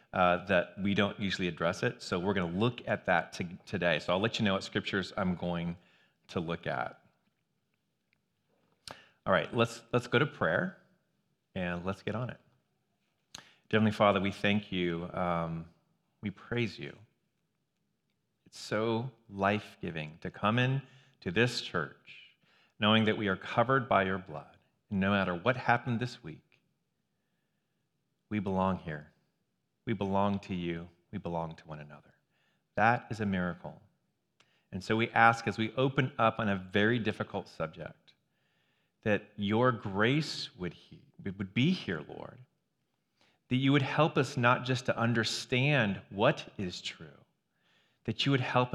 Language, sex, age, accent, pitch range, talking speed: English, male, 30-49, American, 95-125 Hz, 160 wpm